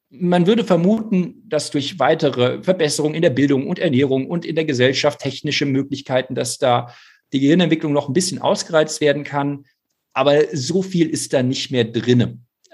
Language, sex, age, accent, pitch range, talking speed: German, male, 50-69, German, 125-170 Hz, 170 wpm